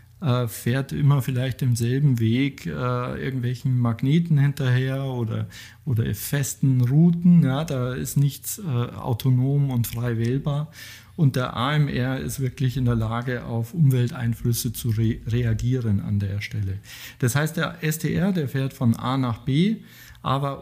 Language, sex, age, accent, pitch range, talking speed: German, male, 50-69, German, 120-145 Hz, 145 wpm